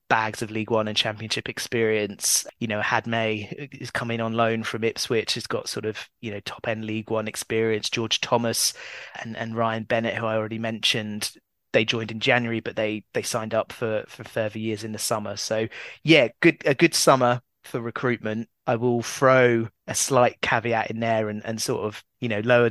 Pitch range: 110-120 Hz